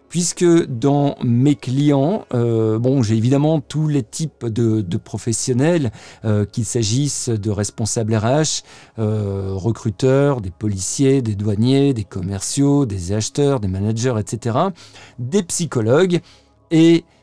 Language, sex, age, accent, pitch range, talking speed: French, male, 50-69, French, 110-145 Hz, 125 wpm